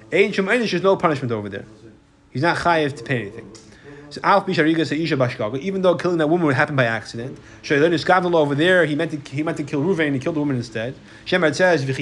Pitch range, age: 125-165 Hz, 30-49